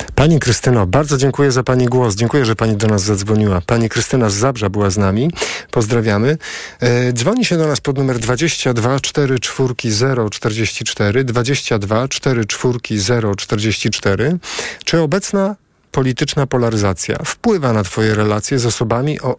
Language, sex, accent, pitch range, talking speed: Polish, male, native, 110-140 Hz, 150 wpm